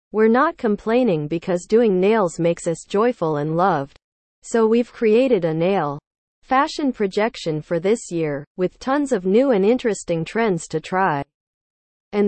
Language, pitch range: English, 165-230 Hz